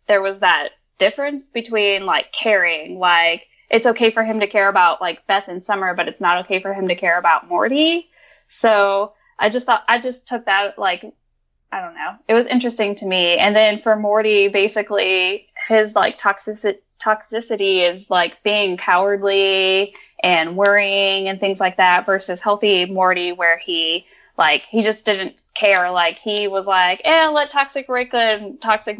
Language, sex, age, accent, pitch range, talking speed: English, female, 10-29, American, 180-220 Hz, 175 wpm